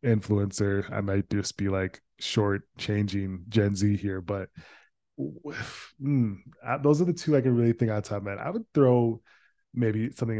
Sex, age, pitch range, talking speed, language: male, 20-39, 100-125 Hz, 165 wpm, English